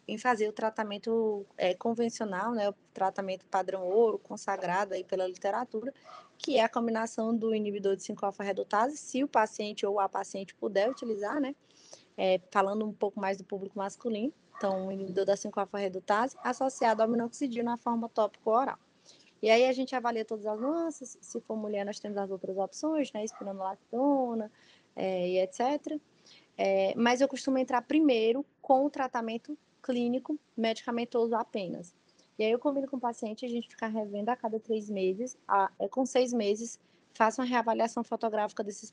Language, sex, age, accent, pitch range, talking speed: Portuguese, female, 20-39, Brazilian, 205-245 Hz, 160 wpm